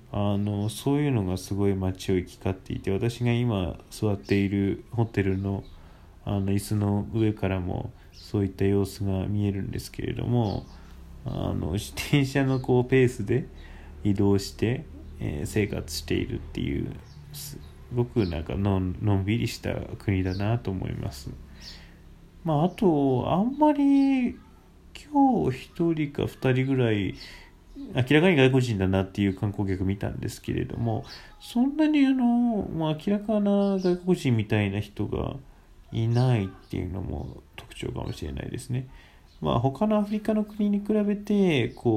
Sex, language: male, Japanese